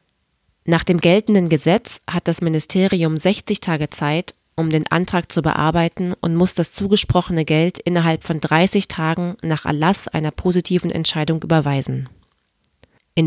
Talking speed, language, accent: 140 wpm, German, German